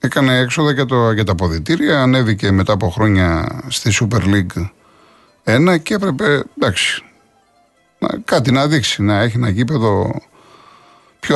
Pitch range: 105-135 Hz